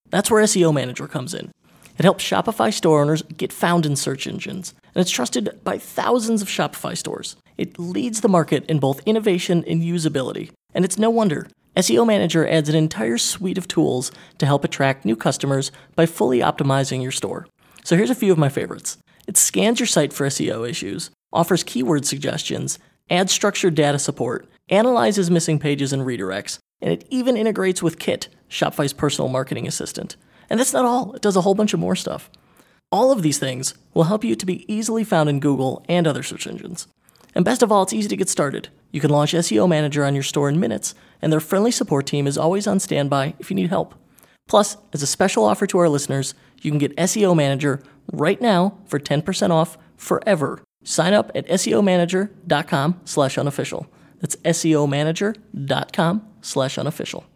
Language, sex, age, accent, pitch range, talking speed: English, male, 20-39, American, 145-195 Hz, 185 wpm